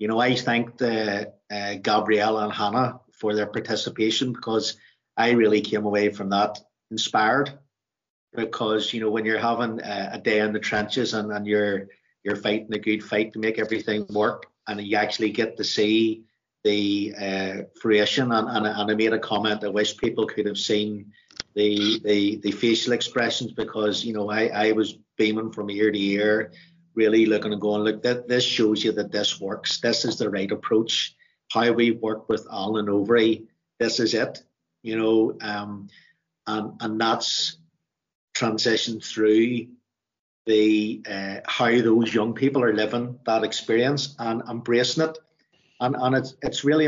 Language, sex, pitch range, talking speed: English, male, 105-125 Hz, 170 wpm